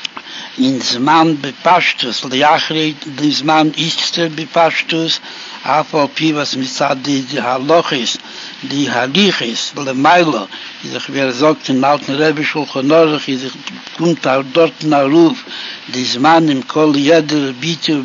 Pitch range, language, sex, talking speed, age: 140-165 Hz, Hebrew, male, 105 wpm, 60-79